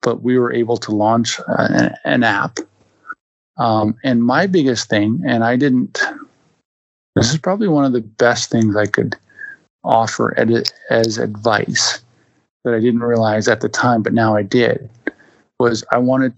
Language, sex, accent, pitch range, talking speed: English, male, American, 110-125 Hz, 160 wpm